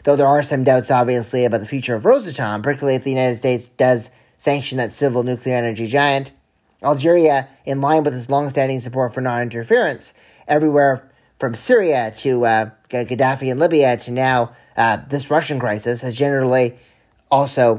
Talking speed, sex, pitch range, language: 170 wpm, male, 125-150 Hz, English